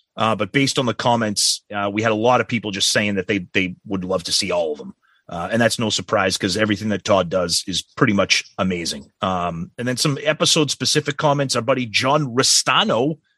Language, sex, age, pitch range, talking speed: English, male, 30-49, 120-160 Hz, 220 wpm